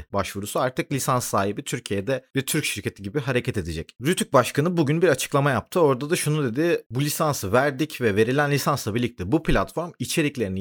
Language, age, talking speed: Turkish, 30-49, 175 wpm